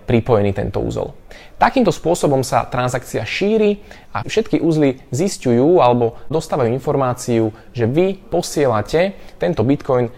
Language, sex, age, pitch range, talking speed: Slovak, male, 20-39, 115-165 Hz, 120 wpm